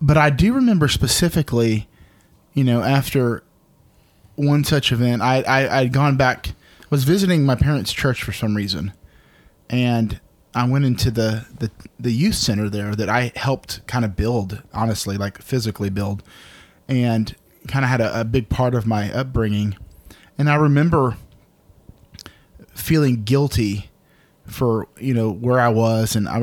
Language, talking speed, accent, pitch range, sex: English, 155 wpm, American, 105-135 Hz, male